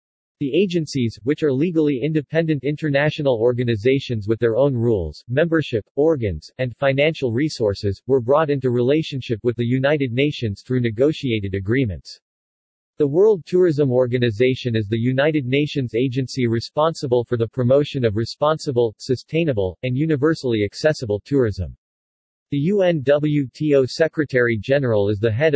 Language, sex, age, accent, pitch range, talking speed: English, male, 40-59, American, 115-150 Hz, 130 wpm